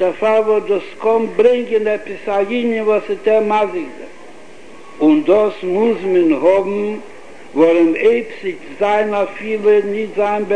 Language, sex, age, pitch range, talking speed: Hebrew, male, 60-79, 190-225 Hz, 140 wpm